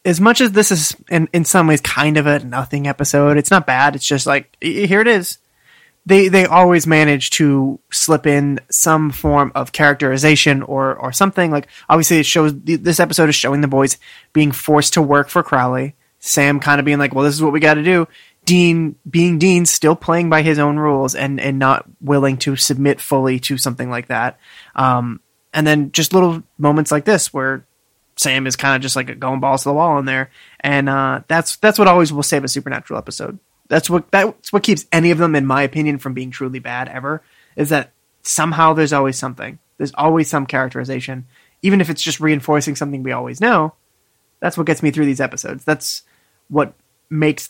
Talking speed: 210 wpm